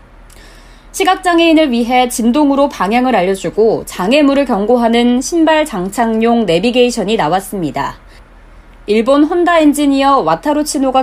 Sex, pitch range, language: female, 215-280 Hz, Korean